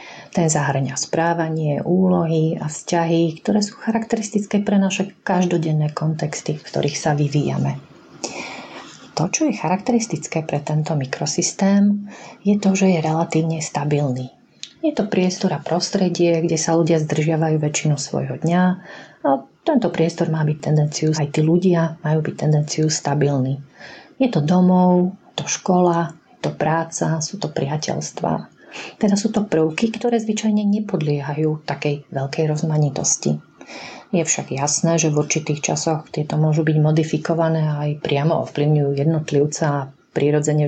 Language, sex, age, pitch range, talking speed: Slovak, female, 30-49, 150-180 Hz, 135 wpm